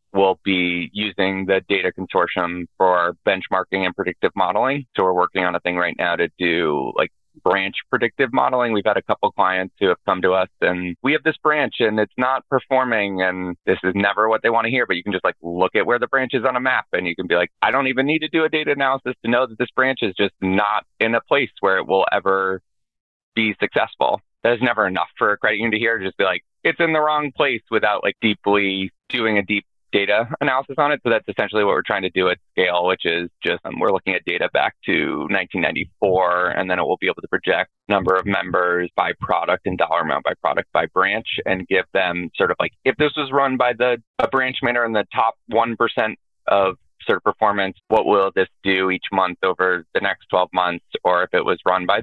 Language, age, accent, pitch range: English, 30-49, American, 95-125 Hz